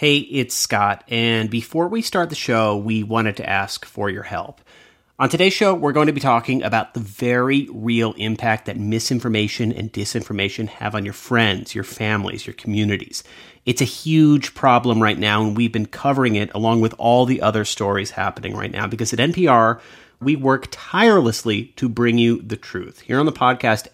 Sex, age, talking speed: male, 30-49, 190 wpm